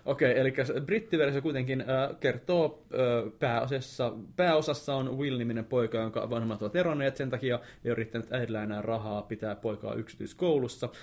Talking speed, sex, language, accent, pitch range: 145 wpm, male, Finnish, native, 105-125 Hz